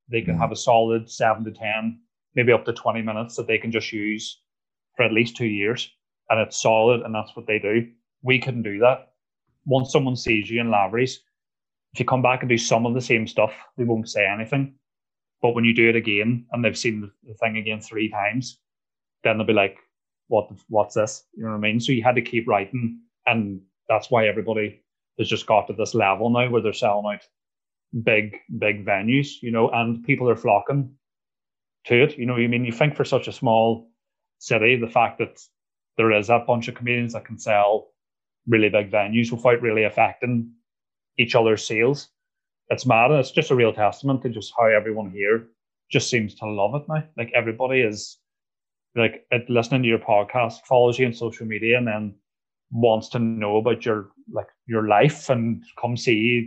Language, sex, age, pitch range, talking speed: English, male, 30-49, 110-120 Hz, 200 wpm